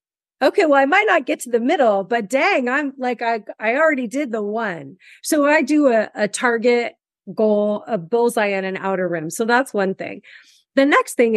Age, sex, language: 30-49, female, English